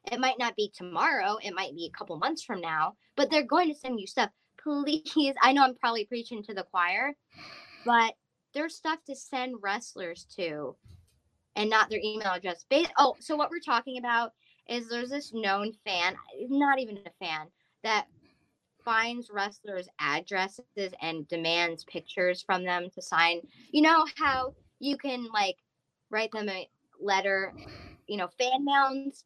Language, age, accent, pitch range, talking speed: English, 20-39, American, 180-240 Hz, 165 wpm